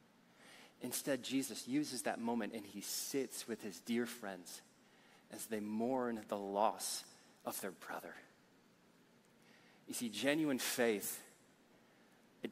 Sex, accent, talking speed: male, American, 120 wpm